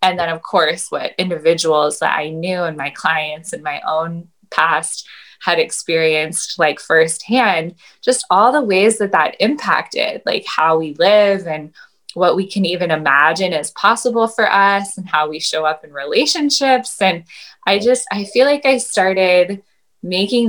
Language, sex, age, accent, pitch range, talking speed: English, female, 10-29, American, 165-205 Hz, 165 wpm